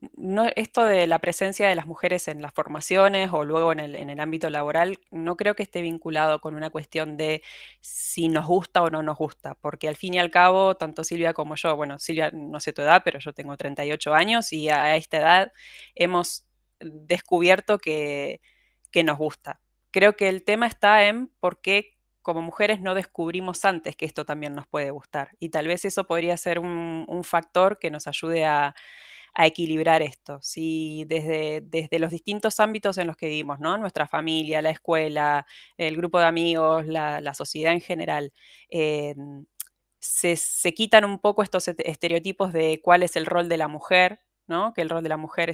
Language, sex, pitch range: Spanish, female, 155-180 Hz